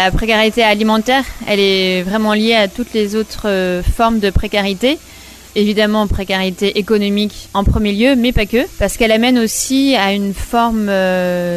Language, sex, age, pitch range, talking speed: French, female, 20-39, 180-220 Hz, 165 wpm